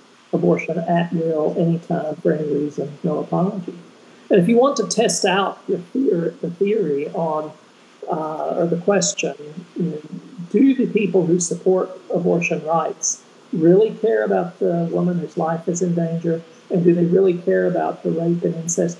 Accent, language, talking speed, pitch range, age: American, English, 160 wpm, 165-195 Hz, 50-69